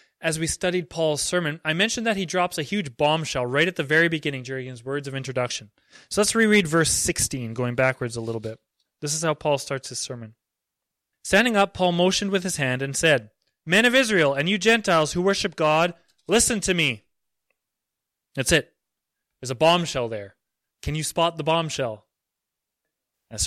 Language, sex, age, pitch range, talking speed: English, male, 20-39, 130-180 Hz, 185 wpm